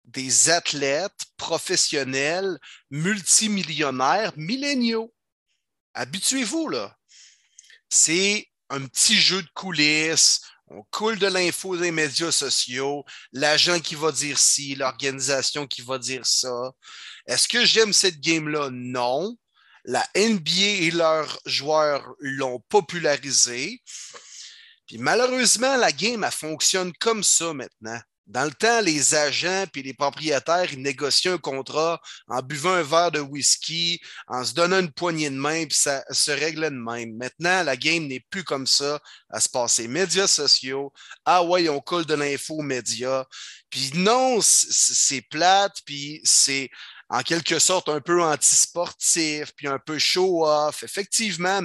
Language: French